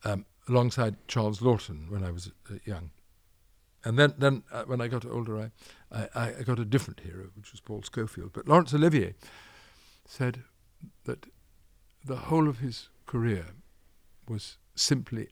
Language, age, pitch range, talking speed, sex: English, 60-79, 95-120 Hz, 155 wpm, male